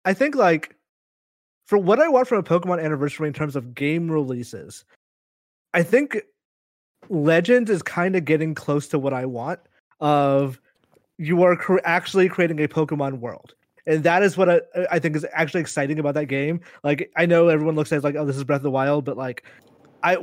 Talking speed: 200 wpm